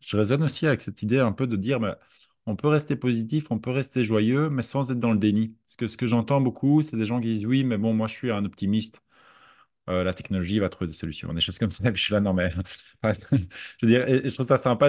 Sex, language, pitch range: male, French, 100-130 Hz